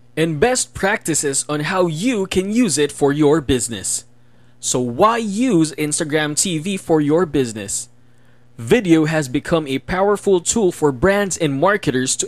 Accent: Filipino